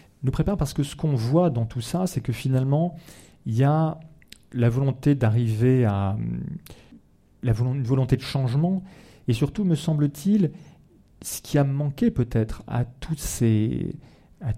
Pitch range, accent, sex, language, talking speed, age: 115-145 Hz, French, male, French, 155 wpm, 40-59